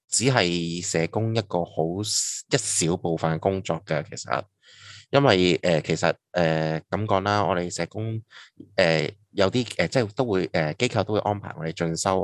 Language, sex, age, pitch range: Chinese, male, 20-39, 85-110 Hz